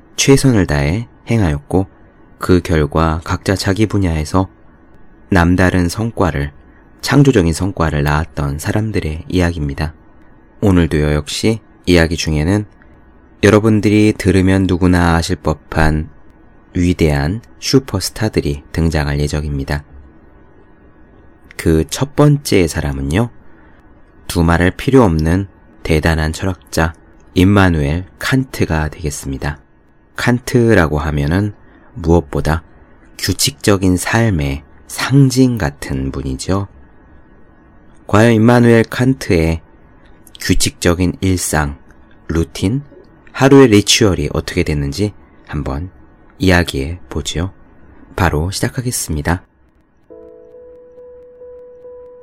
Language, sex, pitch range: Korean, male, 80-110 Hz